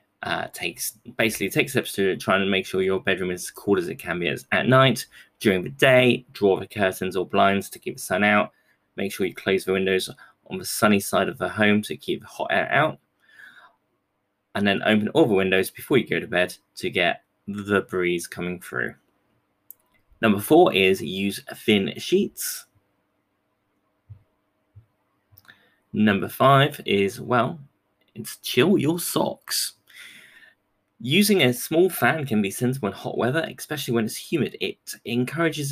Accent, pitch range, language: British, 100-130 Hz, English